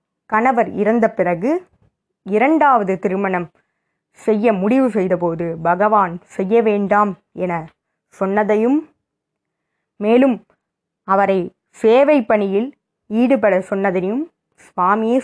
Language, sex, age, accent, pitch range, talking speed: Tamil, female, 20-39, native, 185-230 Hz, 75 wpm